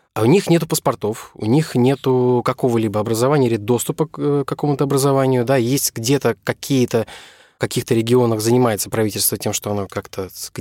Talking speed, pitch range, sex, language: 160 wpm, 115-140 Hz, male, Russian